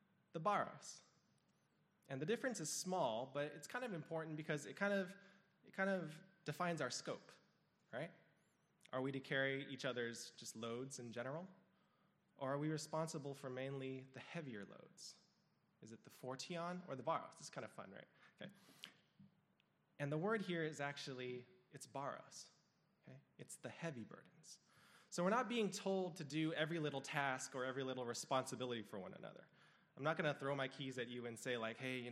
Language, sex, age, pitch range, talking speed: English, male, 20-39, 125-165 Hz, 185 wpm